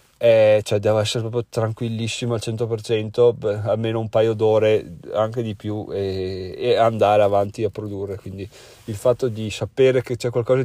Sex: male